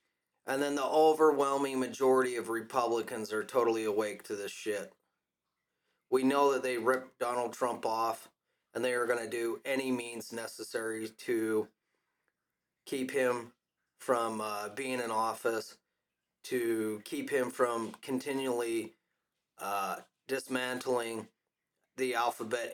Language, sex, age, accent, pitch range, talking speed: English, male, 30-49, American, 115-140 Hz, 125 wpm